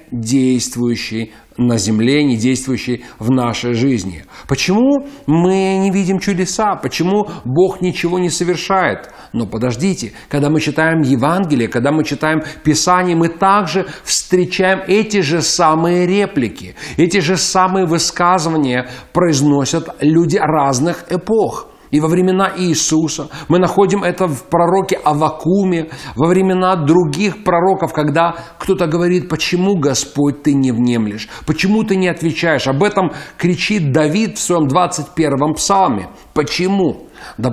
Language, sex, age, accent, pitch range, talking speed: Russian, male, 40-59, native, 150-190 Hz, 125 wpm